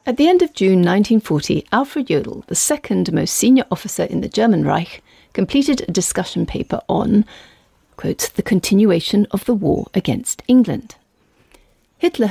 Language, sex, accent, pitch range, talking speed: English, female, British, 200-265 Hz, 145 wpm